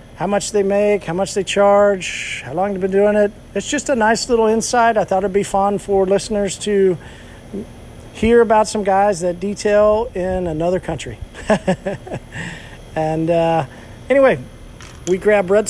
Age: 40-59